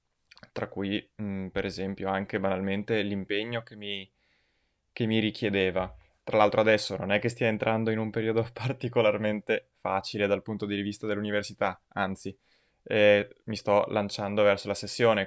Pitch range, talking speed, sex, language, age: 100-115 Hz, 155 wpm, male, Italian, 20-39